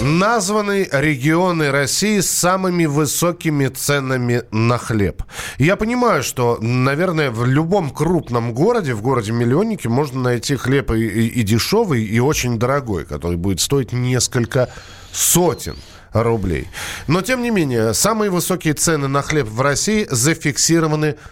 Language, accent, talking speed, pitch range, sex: Russian, native, 130 wpm, 115-160 Hz, male